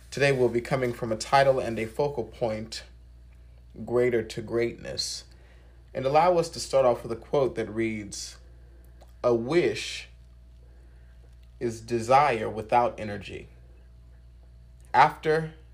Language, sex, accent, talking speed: English, male, American, 120 wpm